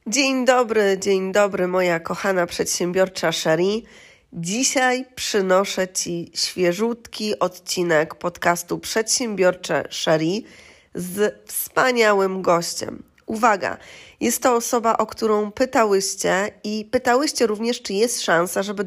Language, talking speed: Polish, 105 wpm